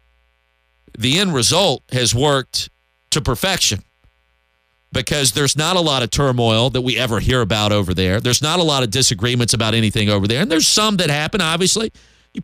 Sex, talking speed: male, 185 wpm